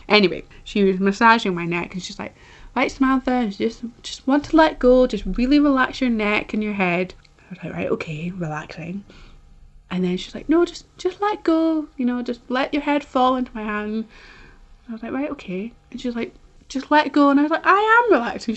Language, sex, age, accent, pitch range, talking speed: English, female, 20-39, British, 180-240 Hz, 220 wpm